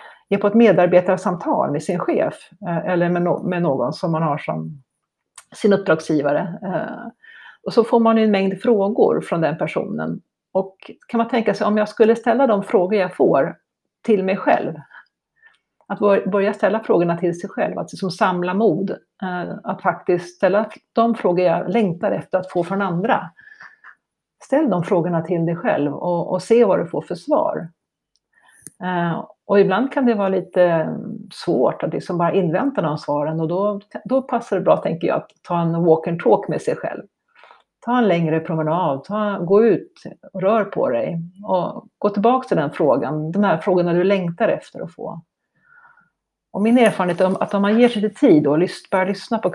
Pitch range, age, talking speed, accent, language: 175-225 Hz, 60-79, 180 wpm, native, Swedish